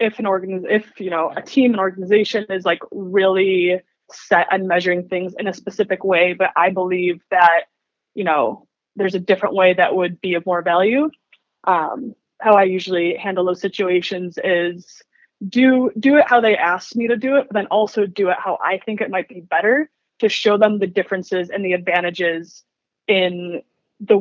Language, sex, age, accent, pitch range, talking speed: English, female, 20-39, American, 180-215 Hz, 190 wpm